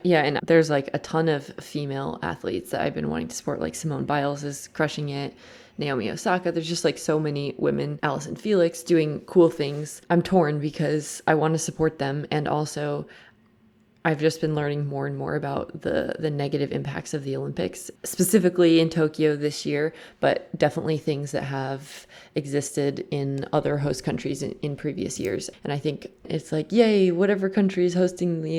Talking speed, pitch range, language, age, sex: 185 wpm, 145-165 Hz, English, 20-39, female